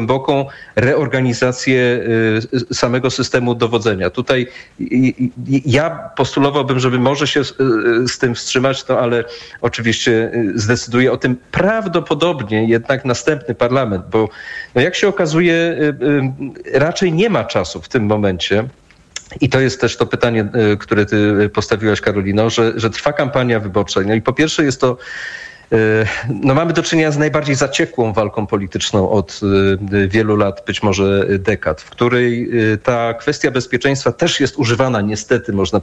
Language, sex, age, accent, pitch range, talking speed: Polish, male, 40-59, native, 110-140 Hz, 135 wpm